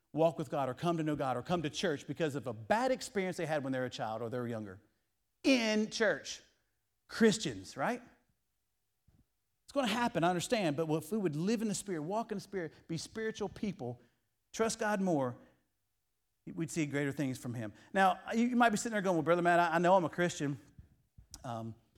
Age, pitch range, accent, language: 40-59, 130-185 Hz, American, English